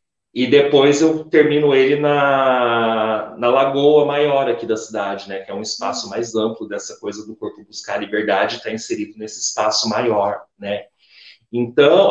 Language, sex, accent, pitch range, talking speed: Portuguese, male, Brazilian, 115-150 Hz, 170 wpm